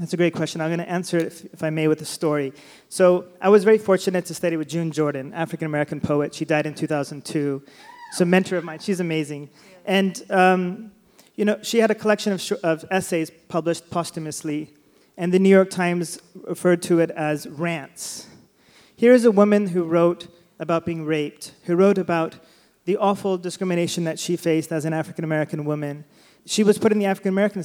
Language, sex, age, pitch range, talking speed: English, male, 30-49, 155-190 Hz, 195 wpm